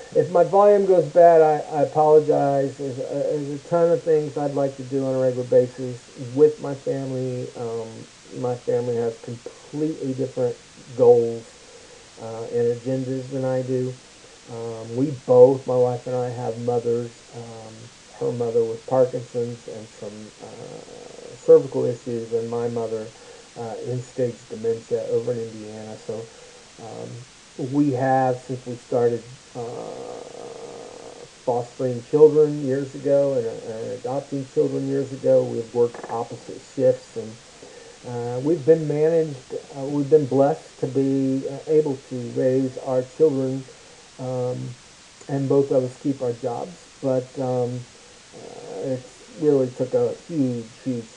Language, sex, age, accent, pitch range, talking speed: English, male, 50-69, American, 120-155 Hz, 145 wpm